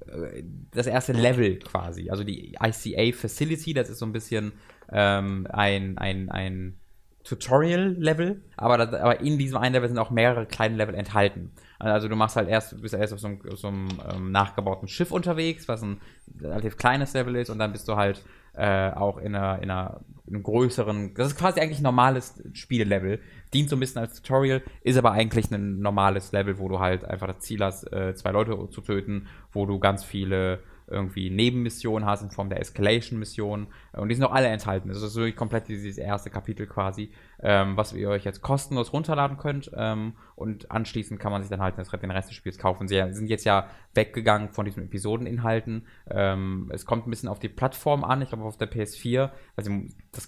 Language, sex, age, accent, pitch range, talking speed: German, male, 20-39, German, 100-120 Hz, 195 wpm